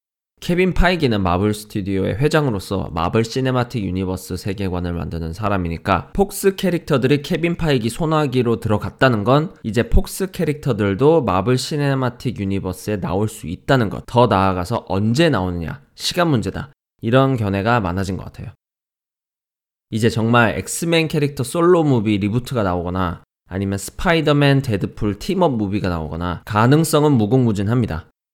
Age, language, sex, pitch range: 20-39, Korean, male, 95-140 Hz